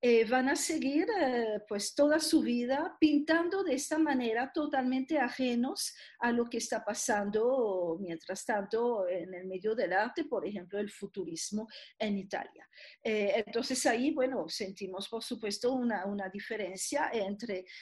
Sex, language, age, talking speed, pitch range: female, Spanish, 50-69, 150 wpm, 200-265 Hz